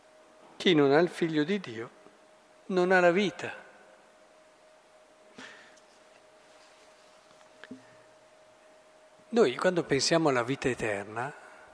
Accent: native